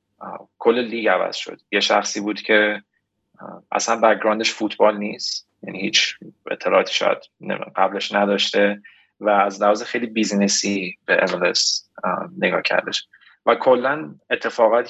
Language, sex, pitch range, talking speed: Persian, male, 105-115 Hz, 120 wpm